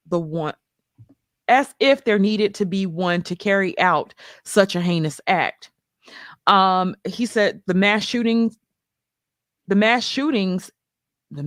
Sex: female